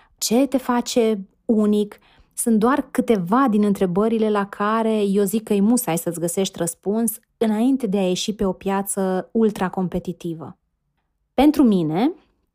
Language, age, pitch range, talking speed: Romanian, 30-49, 195-245 Hz, 140 wpm